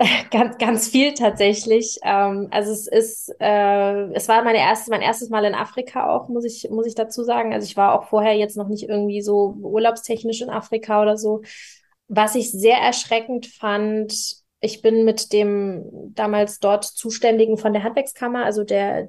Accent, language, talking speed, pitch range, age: German, German, 175 wpm, 205-235 Hz, 20-39